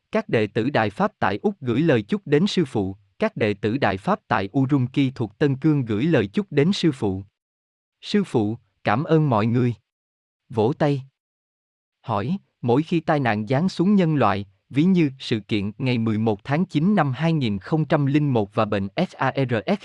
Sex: male